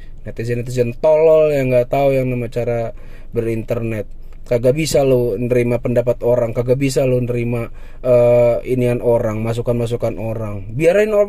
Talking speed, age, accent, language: 135 wpm, 20-39, native, Indonesian